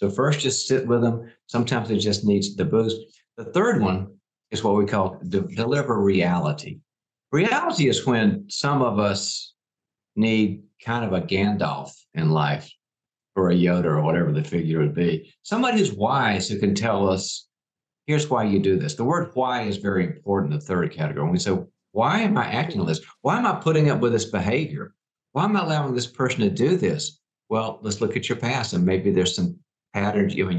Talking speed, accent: 200 wpm, American